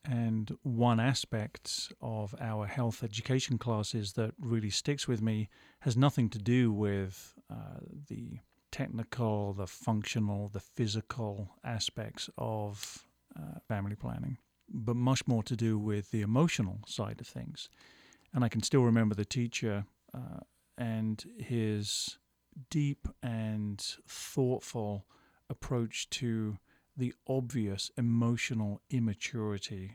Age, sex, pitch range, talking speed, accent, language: 40-59, male, 105-125 Hz, 120 wpm, British, English